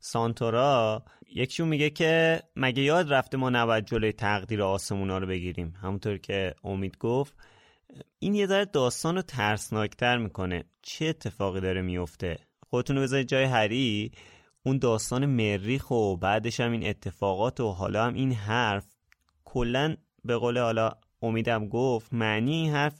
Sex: male